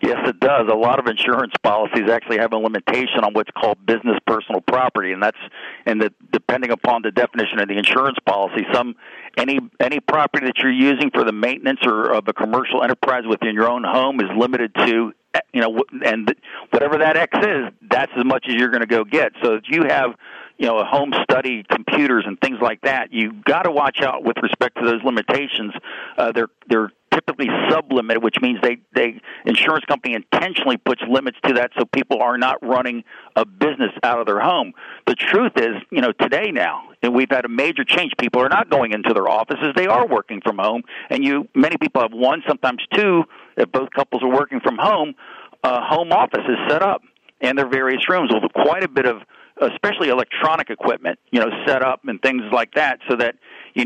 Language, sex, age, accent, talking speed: English, male, 50-69, American, 210 wpm